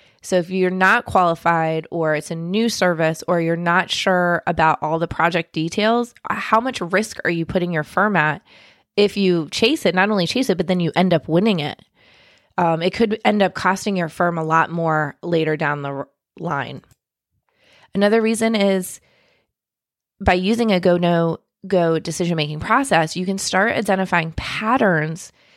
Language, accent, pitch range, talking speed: English, American, 160-190 Hz, 170 wpm